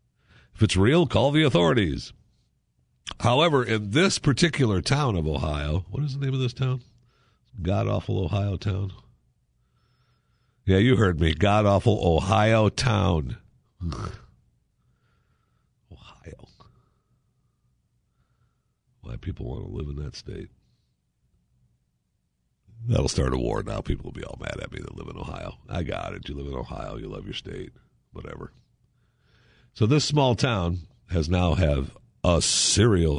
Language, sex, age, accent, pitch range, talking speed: English, male, 60-79, American, 80-120 Hz, 135 wpm